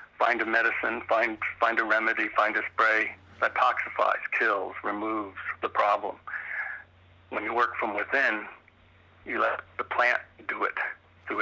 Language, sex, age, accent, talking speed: English, male, 60-79, American, 145 wpm